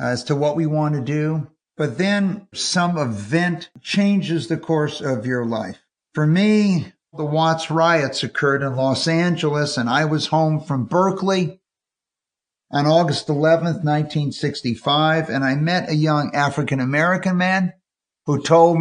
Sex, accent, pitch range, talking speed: male, American, 140-170 Hz, 145 wpm